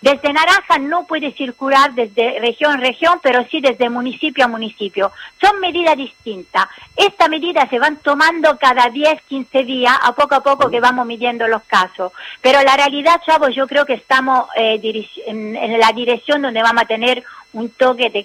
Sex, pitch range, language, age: female, 225-270 Hz, Spanish, 40-59